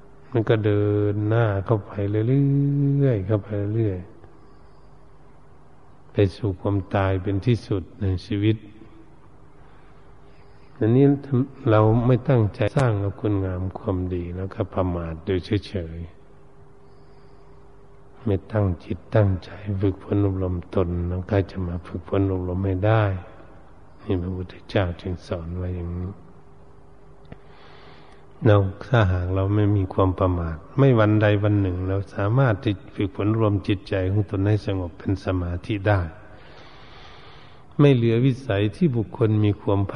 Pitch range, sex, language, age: 90-105 Hz, male, Thai, 60-79